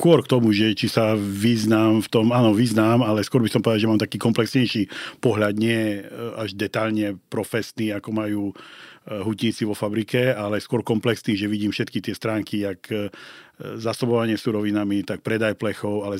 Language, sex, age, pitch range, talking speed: Slovak, male, 50-69, 100-115 Hz, 165 wpm